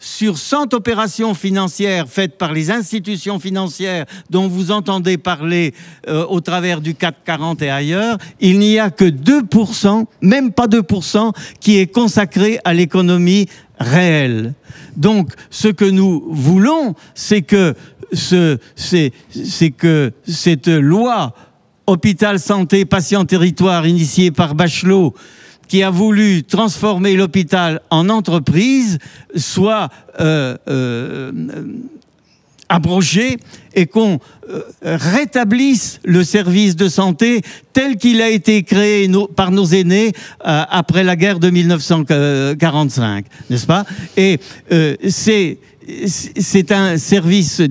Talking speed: 125 wpm